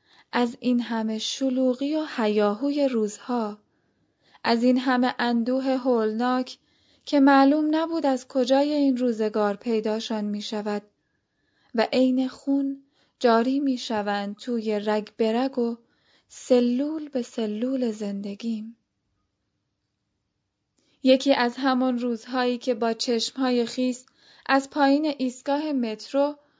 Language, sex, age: Persian, female, 10-29